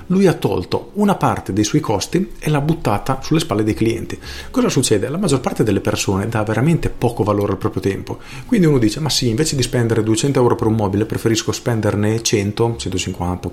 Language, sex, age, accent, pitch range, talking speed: Italian, male, 40-59, native, 105-145 Hz, 205 wpm